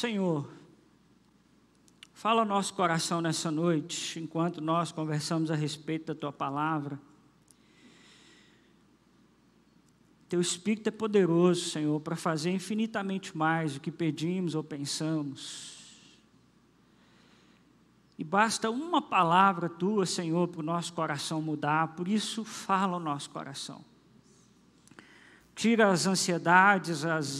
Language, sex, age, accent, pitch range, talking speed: Portuguese, male, 50-69, Brazilian, 160-200 Hz, 110 wpm